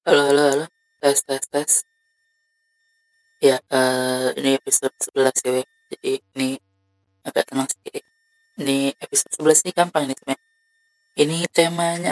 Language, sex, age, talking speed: Indonesian, female, 20-39, 125 wpm